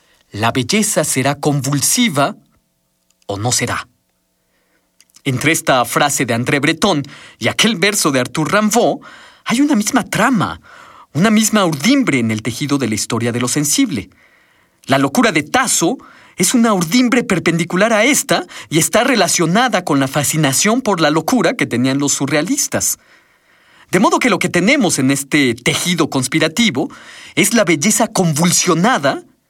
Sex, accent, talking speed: male, Mexican, 145 wpm